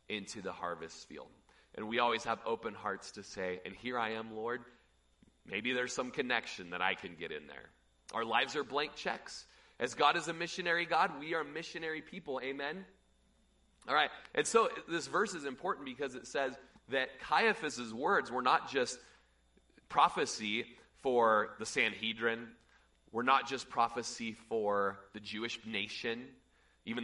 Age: 30-49